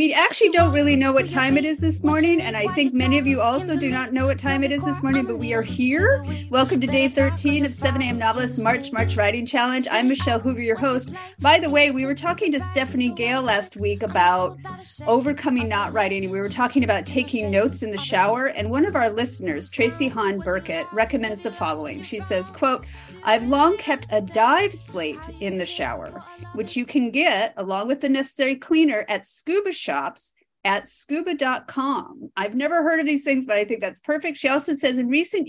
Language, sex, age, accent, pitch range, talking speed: English, female, 40-59, American, 190-275 Hz, 210 wpm